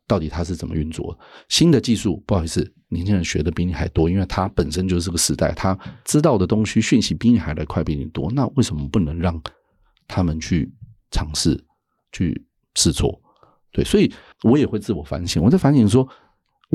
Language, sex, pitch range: Chinese, male, 85-110 Hz